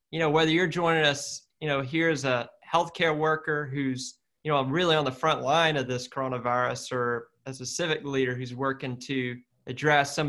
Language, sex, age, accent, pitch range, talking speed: English, male, 20-39, American, 125-150 Hz, 200 wpm